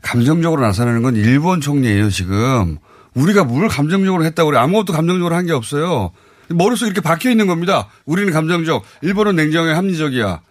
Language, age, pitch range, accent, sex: Korean, 30-49, 140-210 Hz, native, male